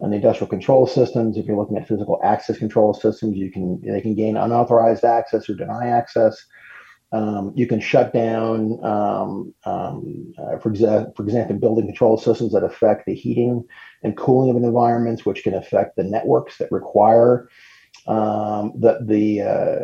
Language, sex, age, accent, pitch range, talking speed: English, male, 40-59, American, 105-120 Hz, 175 wpm